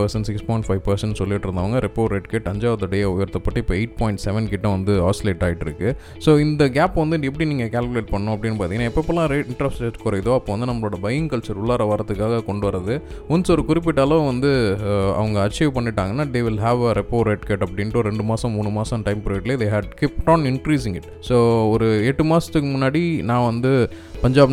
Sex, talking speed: male, 195 wpm